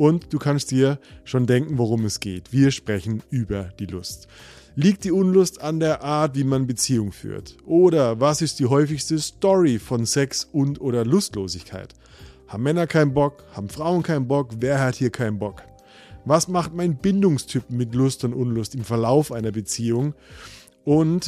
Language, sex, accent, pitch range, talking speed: German, male, German, 115-150 Hz, 170 wpm